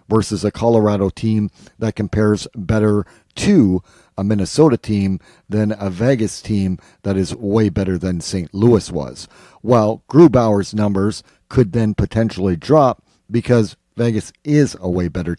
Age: 50-69